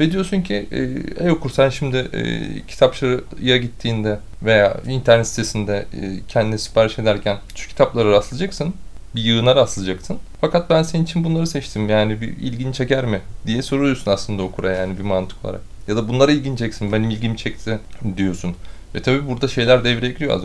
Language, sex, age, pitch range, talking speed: Turkish, male, 30-49, 95-125 Hz, 160 wpm